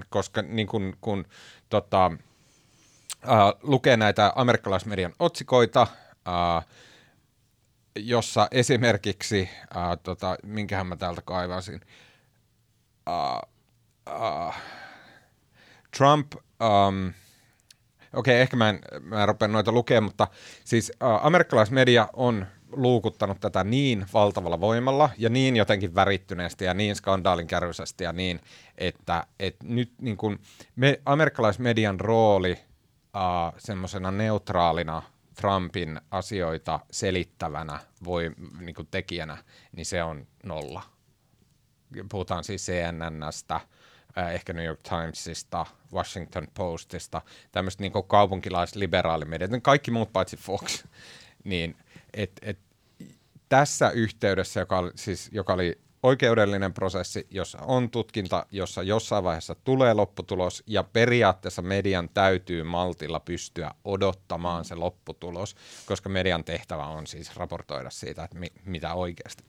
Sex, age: male, 30-49